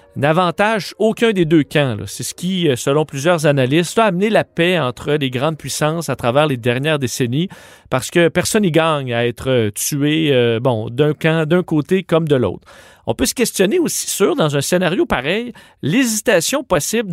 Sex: male